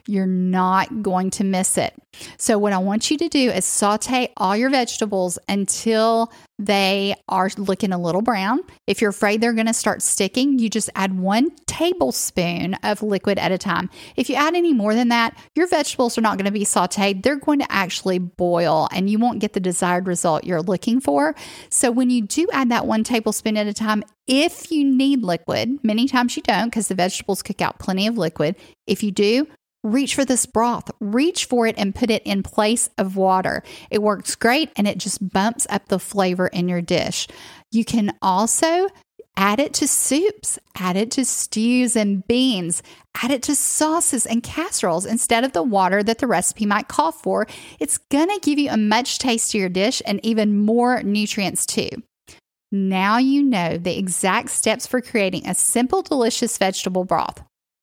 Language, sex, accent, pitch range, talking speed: English, female, American, 195-250 Hz, 195 wpm